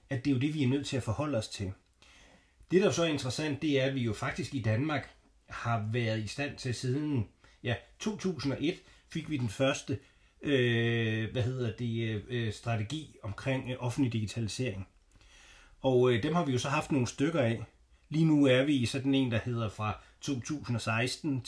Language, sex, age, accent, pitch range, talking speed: Danish, male, 30-49, native, 110-135 Hz, 195 wpm